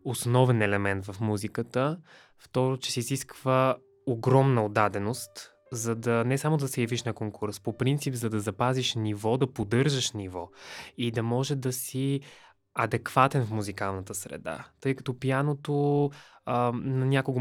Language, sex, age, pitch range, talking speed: Bulgarian, male, 20-39, 110-135 Hz, 140 wpm